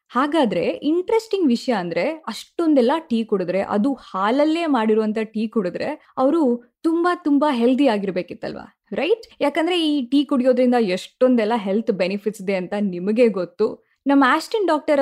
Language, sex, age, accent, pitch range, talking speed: Kannada, female, 20-39, native, 205-280 Hz, 130 wpm